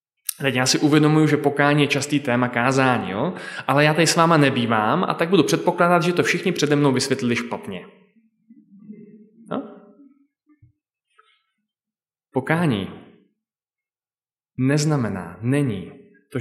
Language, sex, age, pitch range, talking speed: Czech, male, 20-39, 125-175 Hz, 115 wpm